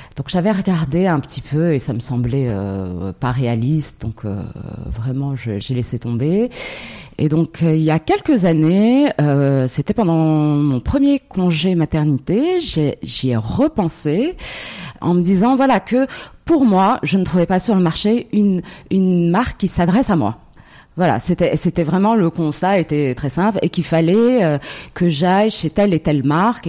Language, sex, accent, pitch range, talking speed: French, female, French, 145-205 Hz, 180 wpm